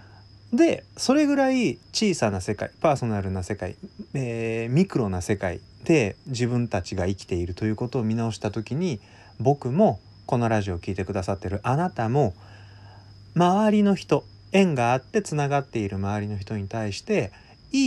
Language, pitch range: Japanese, 100-140 Hz